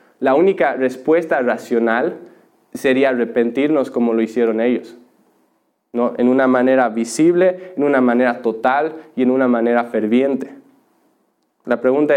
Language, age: Spanish, 20-39